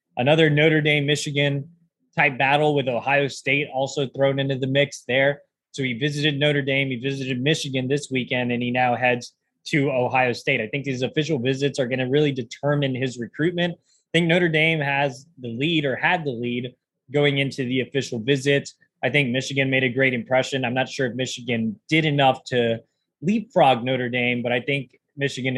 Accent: American